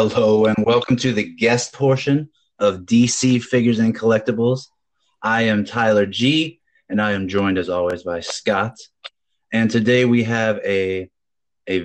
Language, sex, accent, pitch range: English, male, American, 95-115 Hz